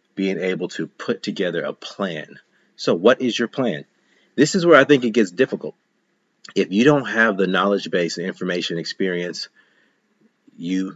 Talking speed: 170 wpm